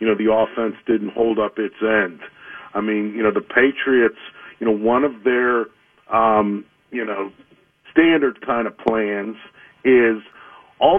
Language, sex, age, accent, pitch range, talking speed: English, male, 50-69, American, 110-125 Hz, 160 wpm